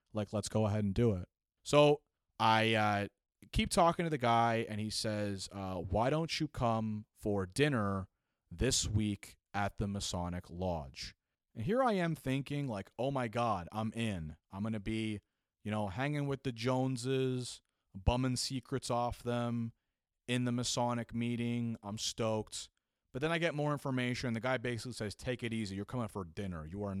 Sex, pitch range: male, 95-120 Hz